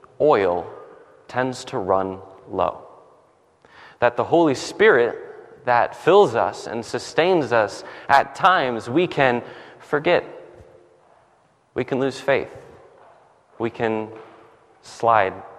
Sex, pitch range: male, 120-165 Hz